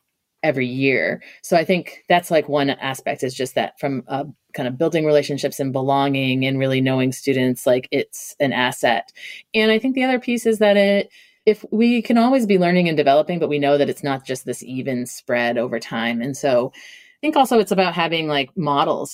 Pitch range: 135-175 Hz